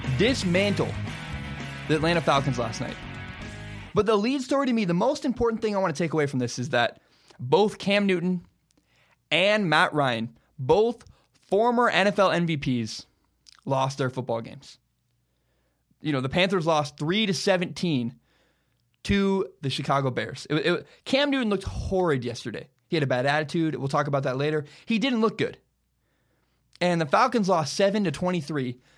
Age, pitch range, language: 20-39, 135-195 Hz, English